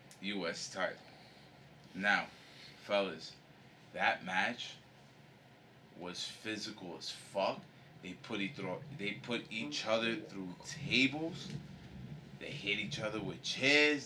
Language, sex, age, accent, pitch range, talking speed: English, male, 20-39, American, 100-130 Hz, 110 wpm